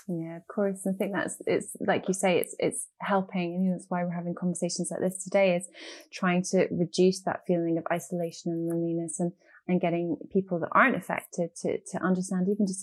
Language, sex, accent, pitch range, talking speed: English, female, British, 175-195 Hz, 215 wpm